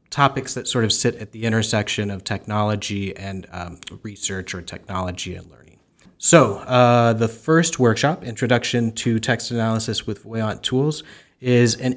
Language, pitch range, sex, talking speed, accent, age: English, 100-120 Hz, male, 155 wpm, American, 30-49